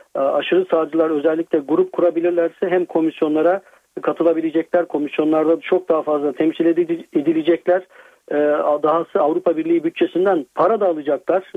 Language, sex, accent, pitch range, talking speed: Turkish, male, native, 155-180 Hz, 115 wpm